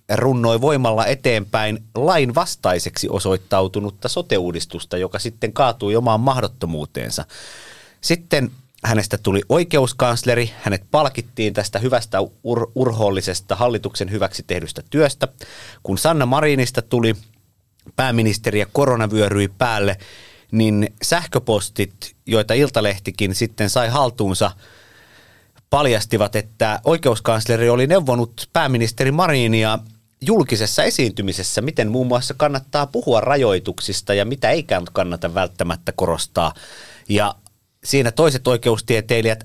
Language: Finnish